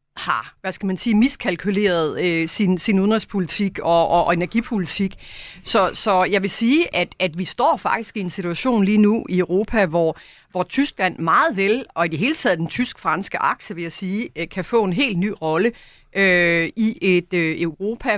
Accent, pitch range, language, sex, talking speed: native, 175-215 Hz, Danish, female, 190 wpm